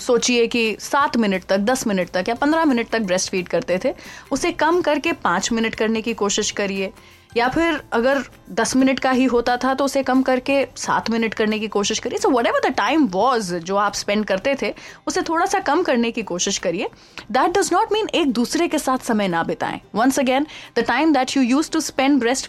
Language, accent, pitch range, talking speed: Hindi, native, 215-300 Hz, 225 wpm